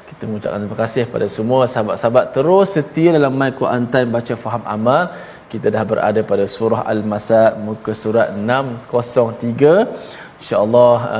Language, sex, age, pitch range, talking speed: Malayalam, male, 20-39, 105-140 Hz, 140 wpm